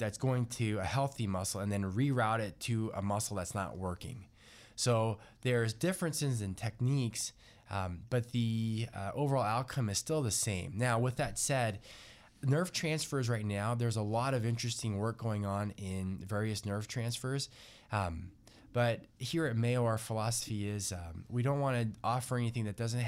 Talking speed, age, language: 175 wpm, 20-39, English